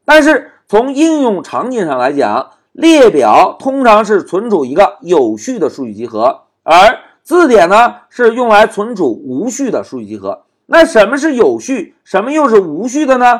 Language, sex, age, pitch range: Chinese, male, 50-69, 220-310 Hz